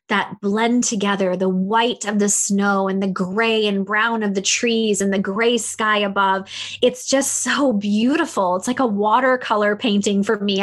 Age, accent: 20-39, American